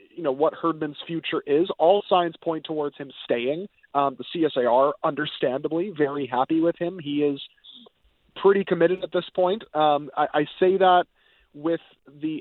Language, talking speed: English, 165 wpm